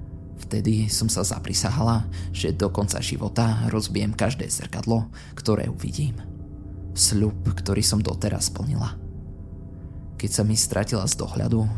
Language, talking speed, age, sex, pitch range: Slovak, 120 wpm, 20-39, male, 90-110 Hz